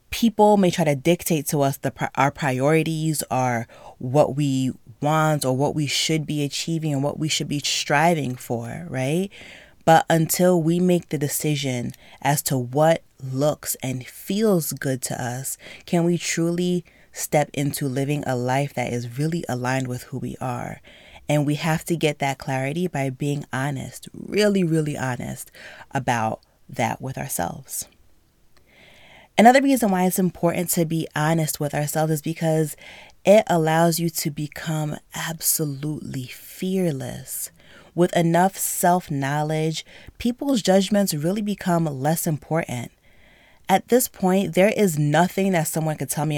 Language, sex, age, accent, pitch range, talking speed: English, female, 20-39, American, 135-170 Hz, 150 wpm